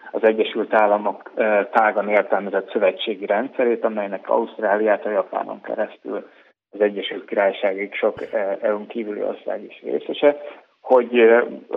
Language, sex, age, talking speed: Hungarian, male, 30-49, 105 wpm